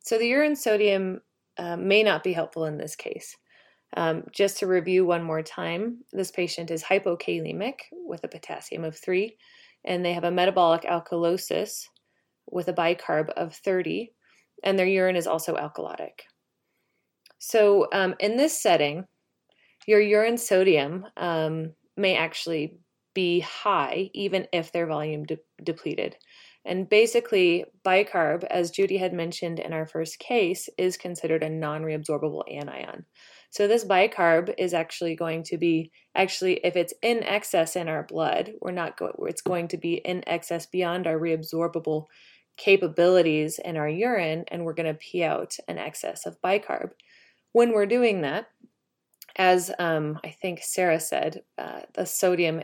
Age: 20-39